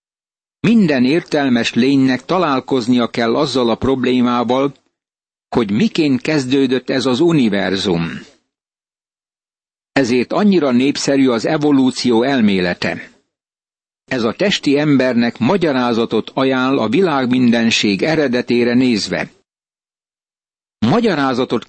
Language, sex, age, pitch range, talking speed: Hungarian, male, 60-79, 120-150 Hz, 85 wpm